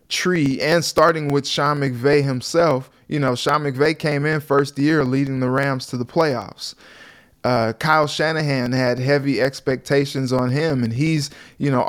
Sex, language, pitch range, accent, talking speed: male, English, 130-155 Hz, American, 165 wpm